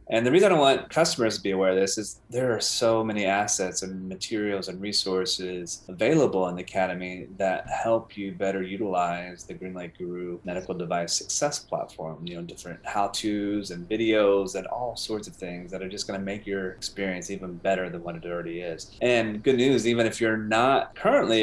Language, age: English, 30-49